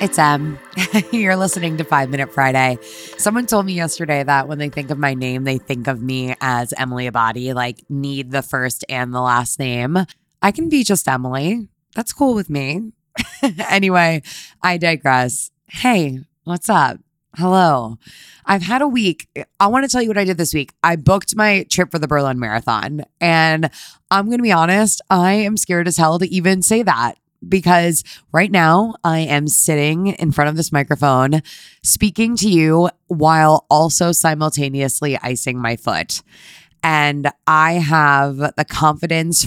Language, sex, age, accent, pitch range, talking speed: English, female, 20-39, American, 140-175 Hz, 170 wpm